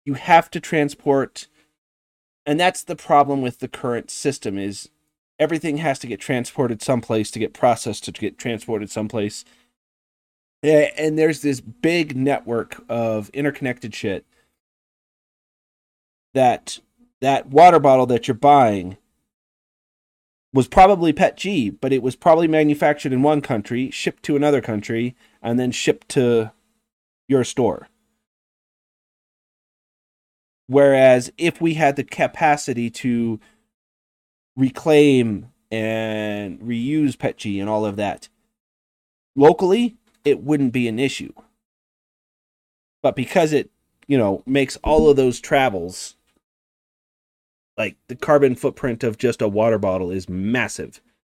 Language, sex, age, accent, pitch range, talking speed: English, male, 30-49, American, 115-150 Hz, 125 wpm